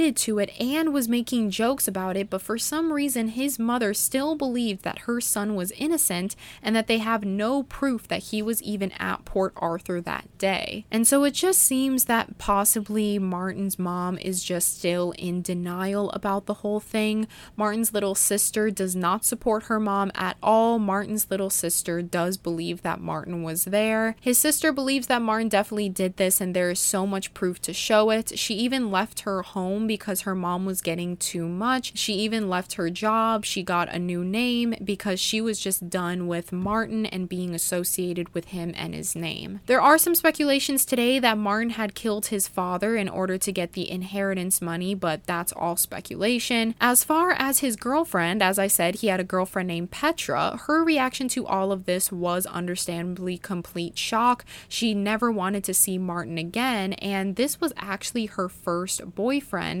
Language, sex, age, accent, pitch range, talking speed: English, female, 20-39, American, 185-230 Hz, 190 wpm